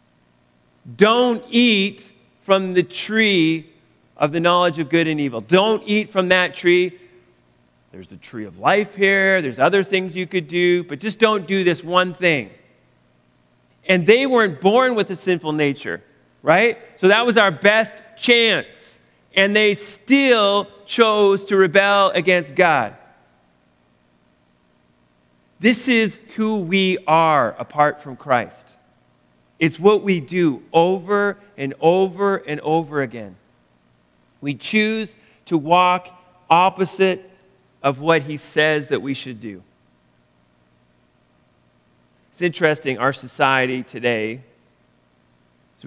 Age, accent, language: 40-59, American, English